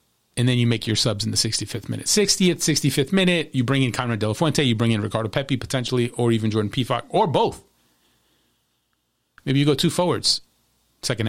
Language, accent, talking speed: English, American, 200 wpm